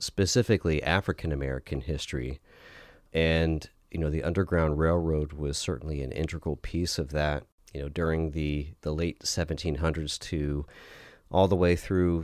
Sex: male